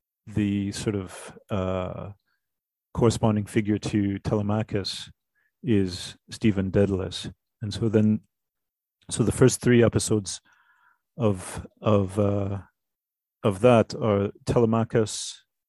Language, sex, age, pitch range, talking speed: English, male, 40-59, 100-115 Hz, 100 wpm